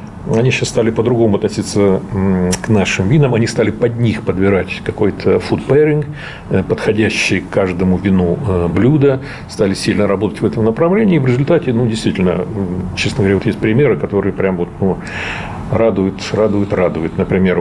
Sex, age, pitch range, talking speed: male, 40-59, 95-140 Hz, 150 wpm